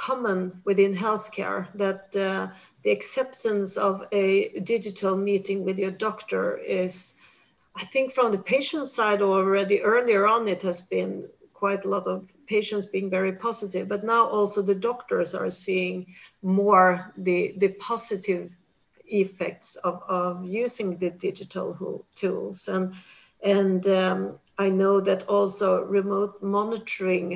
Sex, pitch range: female, 185-215 Hz